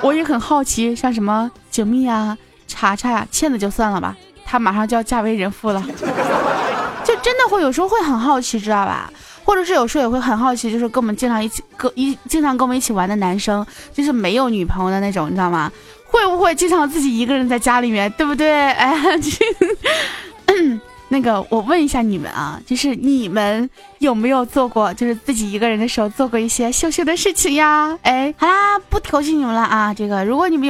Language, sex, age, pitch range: Chinese, female, 20-39, 225-330 Hz